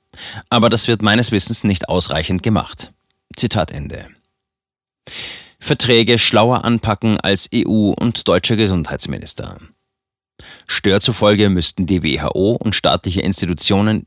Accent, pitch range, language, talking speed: German, 90-115 Hz, German, 110 wpm